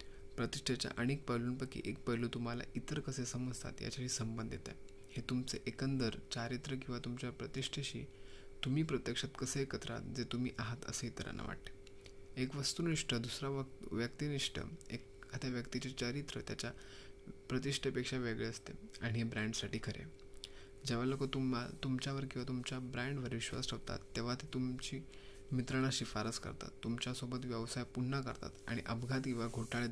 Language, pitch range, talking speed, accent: Marathi, 110-130 Hz, 125 wpm, native